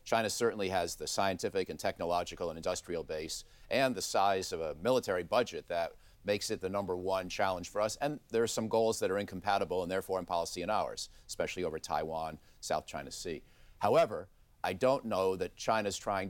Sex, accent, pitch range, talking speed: male, American, 95-125 Hz, 205 wpm